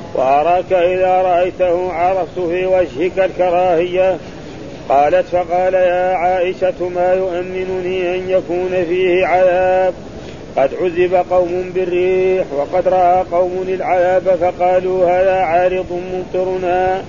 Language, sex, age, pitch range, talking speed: Arabic, male, 40-59, 180-185 Hz, 100 wpm